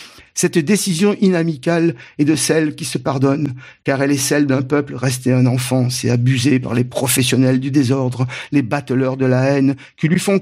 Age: 50-69